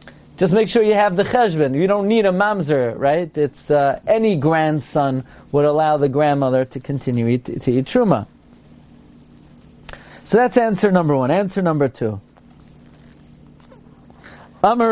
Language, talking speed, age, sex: English, 145 wpm, 40-59, male